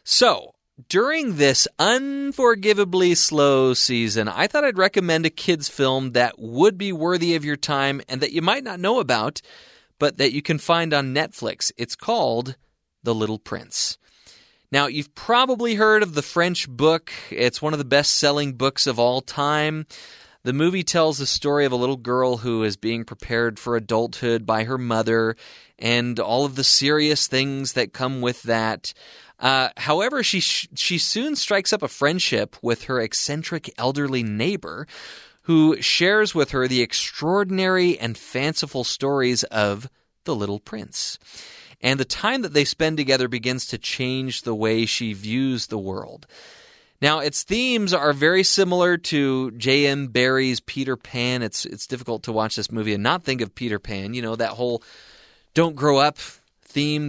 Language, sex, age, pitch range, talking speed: English, male, 30-49, 120-160 Hz, 170 wpm